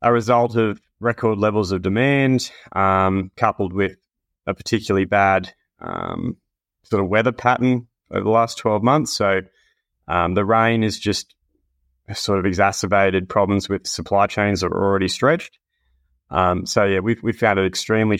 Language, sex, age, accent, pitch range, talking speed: English, male, 20-39, Australian, 95-105 Hz, 160 wpm